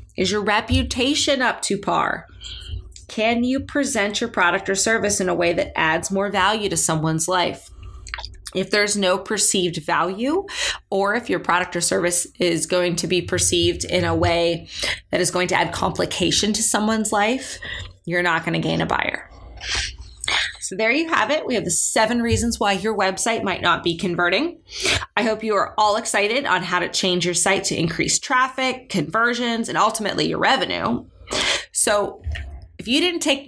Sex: female